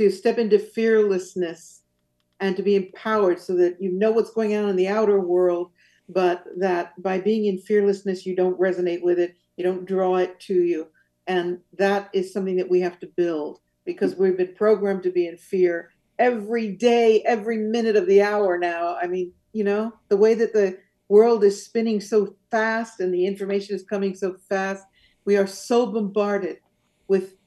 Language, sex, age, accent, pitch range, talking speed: English, female, 50-69, American, 185-225 Hz, 190 wpm